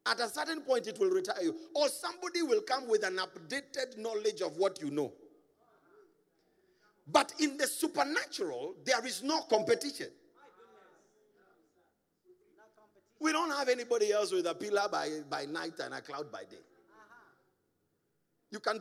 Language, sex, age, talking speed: English, male, 50-69, 145 wpm